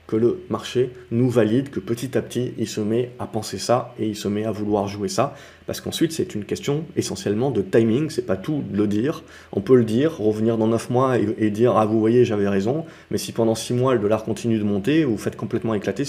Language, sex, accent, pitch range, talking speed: French, male, French, 105-125 Hz, 255 wpm